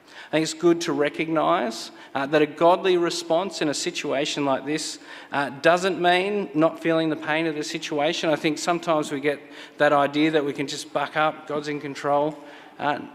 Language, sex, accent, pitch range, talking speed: English, male, Australian, 145-175 Hz, 190 wpm